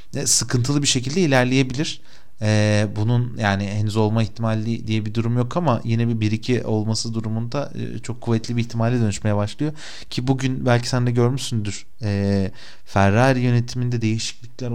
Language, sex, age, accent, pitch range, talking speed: Turkish, male, 30-49, native, 105-120 Hz, 150 wpm